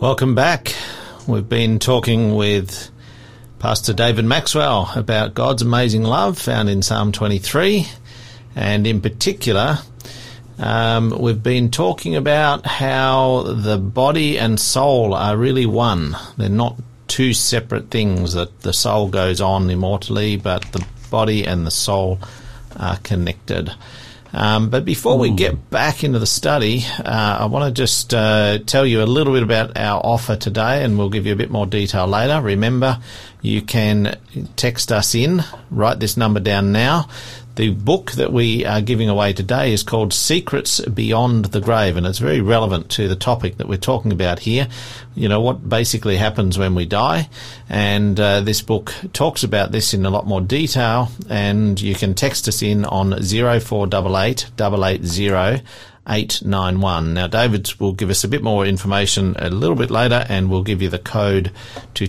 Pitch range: 100-120 Hz